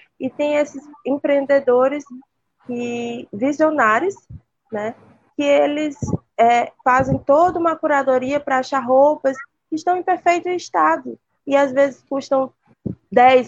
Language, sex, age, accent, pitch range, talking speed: Portuguese, female, 20-39, Brazilian, 225-275 Hz, 120 wpm